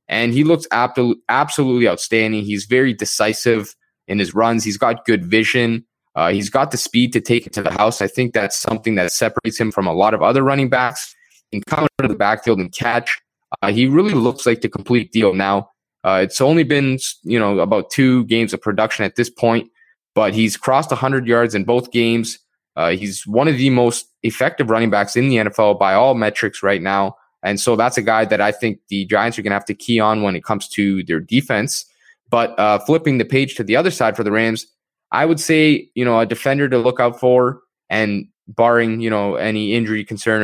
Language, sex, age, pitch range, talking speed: English, male, 20-39, 105-125 Hz, 225 wpm